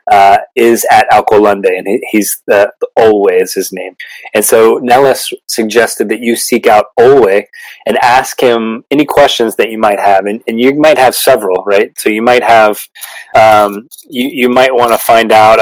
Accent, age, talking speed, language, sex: American, 30-49, 190 wpm, English, male